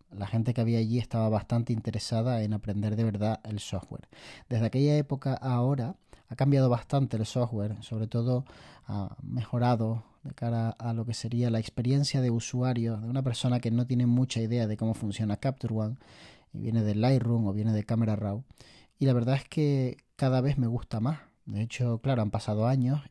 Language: Spanish